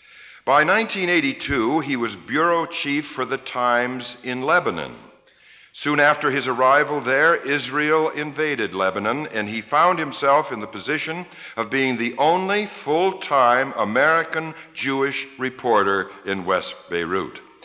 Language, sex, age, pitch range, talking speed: English, male, 60-79, 105-150 Hz, 125 wpm